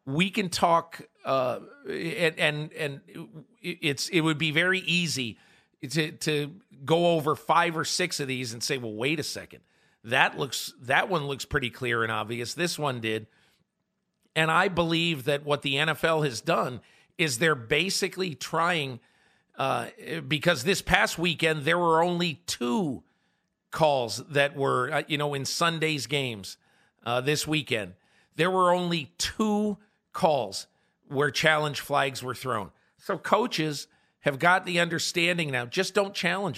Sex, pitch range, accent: male, 140-175 Hz, American